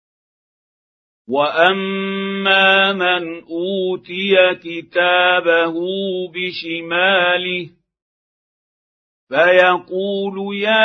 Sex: male